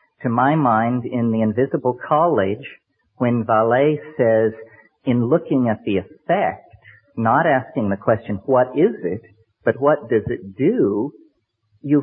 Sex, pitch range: male, 120-155 Hz